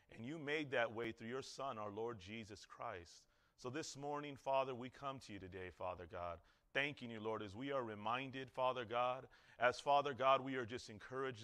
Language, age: English, 30-49